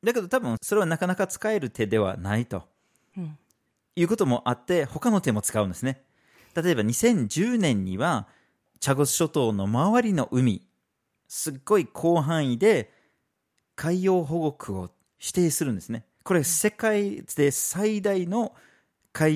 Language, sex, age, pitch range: Japanese, male, 40-59, 115-185 Hz